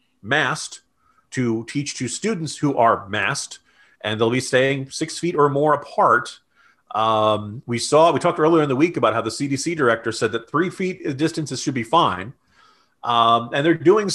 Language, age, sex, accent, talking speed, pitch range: English, 40-59, male, American, 180 wpm, 130-180 Hz